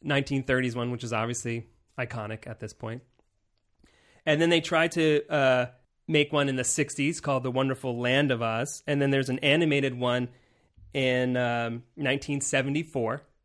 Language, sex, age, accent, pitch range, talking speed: English, male, 30-49, American, 120-150 Hz, 160 wpm